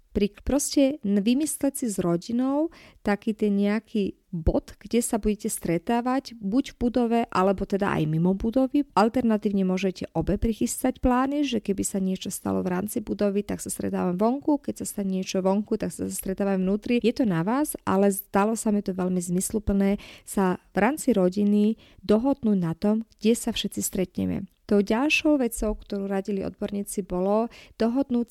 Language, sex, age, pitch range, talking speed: Slovak, female, 30-49, 190-230 Hz, 165 wpm